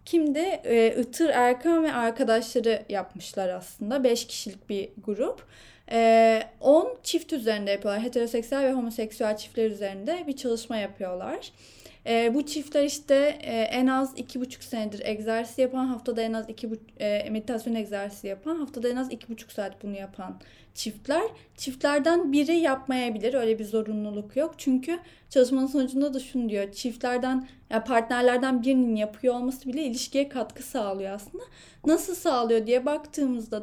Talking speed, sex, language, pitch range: 150 wpm, female, Turkish, 215-280 Hz